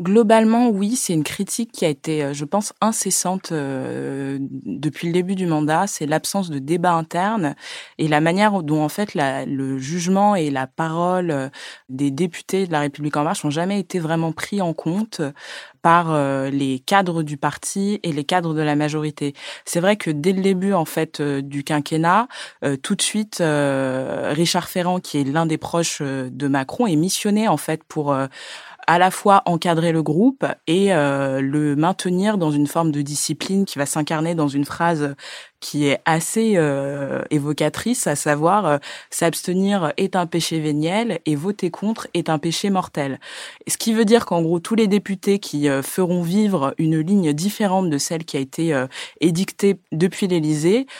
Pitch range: 150-195 Hz